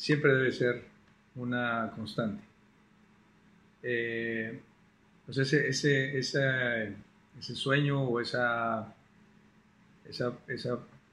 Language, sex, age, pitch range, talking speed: Spanish, male, 40-59, 115-135 Hz, 85 wpm